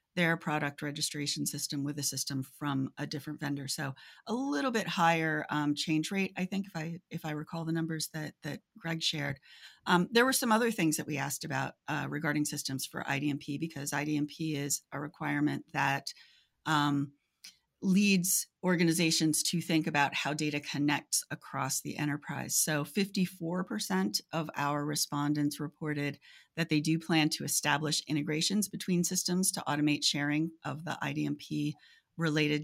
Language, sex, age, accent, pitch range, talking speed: English, female, 40-59, American, 145-165 Hz, 160 wpm